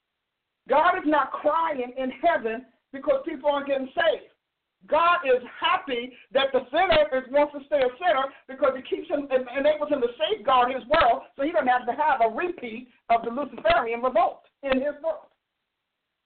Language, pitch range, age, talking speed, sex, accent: English, 230-295 Hz, 50-69, 175 wpm, male, American